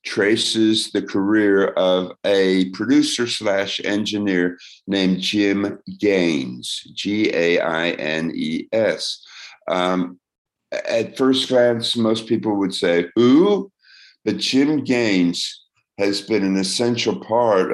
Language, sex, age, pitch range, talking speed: English, male, 50-69, 90-110 Hz, 100 wpm